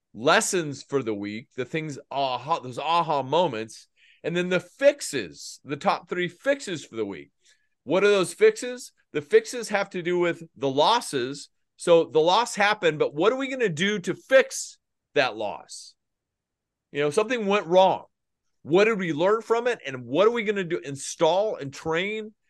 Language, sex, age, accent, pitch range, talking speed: English, male, 40-59, American, 145-200 Hz, 180 wpm